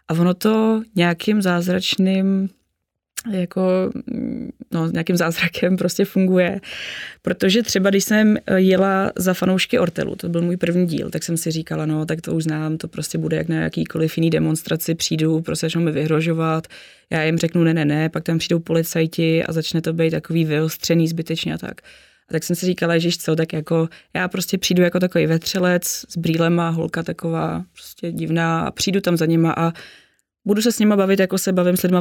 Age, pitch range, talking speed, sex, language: 20-39, 160-185 Hz, 190 wpm, female, Czech